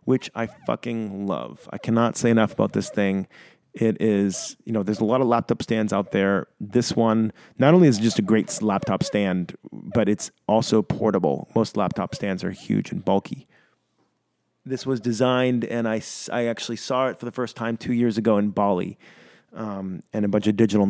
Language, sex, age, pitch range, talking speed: English, male, 30-49, 100-120 Hz, 200 wpm